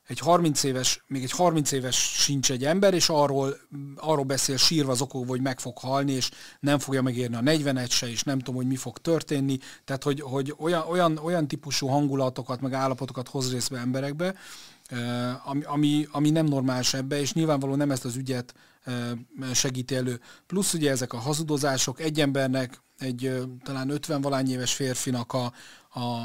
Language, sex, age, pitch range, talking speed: Hungarian, male, 40-59, 130-150 Hz, 170 wpm